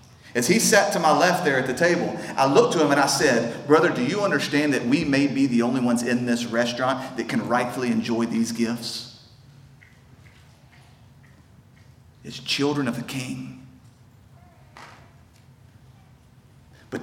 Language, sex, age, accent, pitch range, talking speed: English, male, 40-59, American, 125-150 Hz, 150 wpm